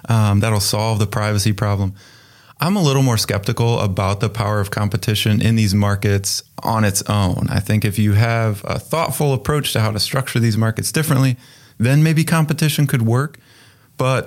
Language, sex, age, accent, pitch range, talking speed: English, male, 30-49, American, 105-130 Hz, 180 wpm